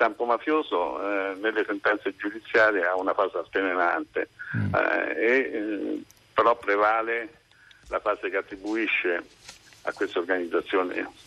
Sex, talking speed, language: male, 105 wpm, Italian